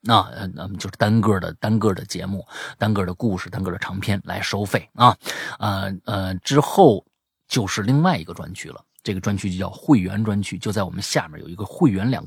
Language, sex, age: Chinese, male, 30-49